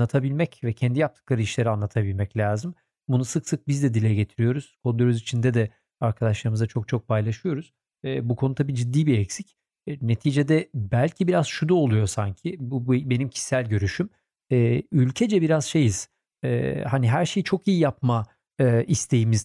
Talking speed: 165 wpm